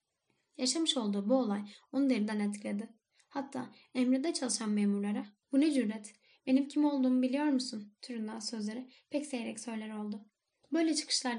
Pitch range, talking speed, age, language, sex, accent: 225-275 Hz, 140 wpm, 10-29, Turkish, female, native